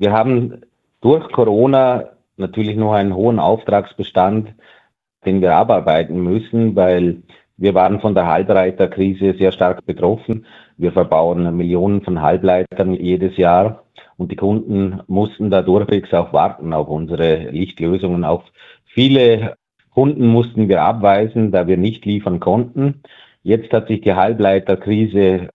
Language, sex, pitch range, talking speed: German, male, 90-115 Hz, 130 wpm